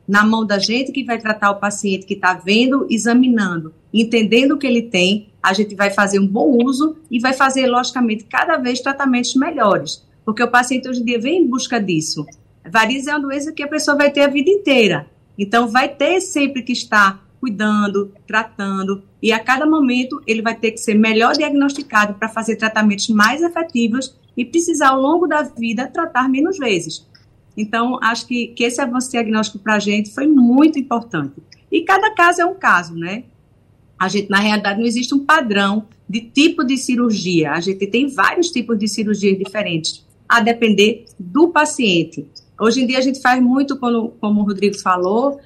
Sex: female